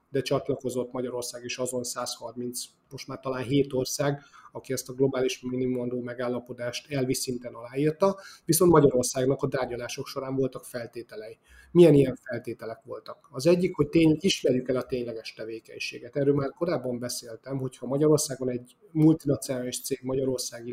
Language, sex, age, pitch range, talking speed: Hungarian, male, 30-49, 125-140 Hz, 145 wpm